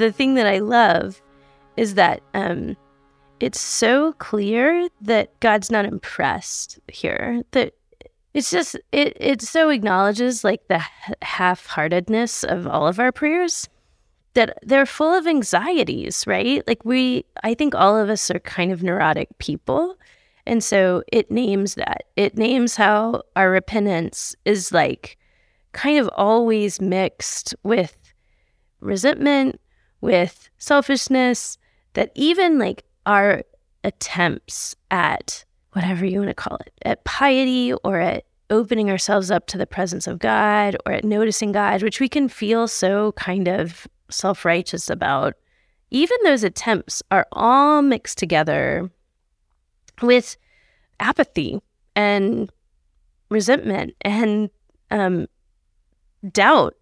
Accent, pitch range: American, 190-255 Hz